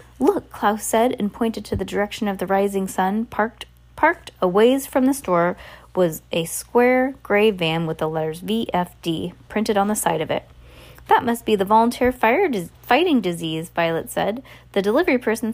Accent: American